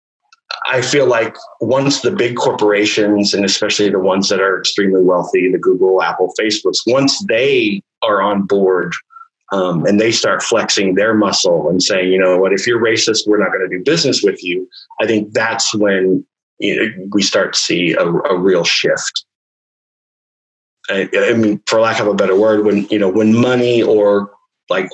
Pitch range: 100-125 Hz